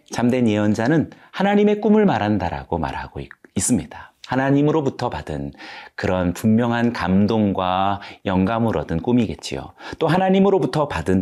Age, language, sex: 40-59, Korean, male